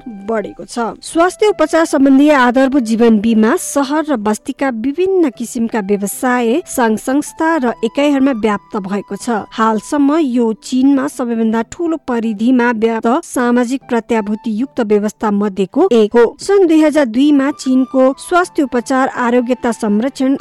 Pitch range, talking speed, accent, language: 225-275 Hz, 135 wpm, Indian, English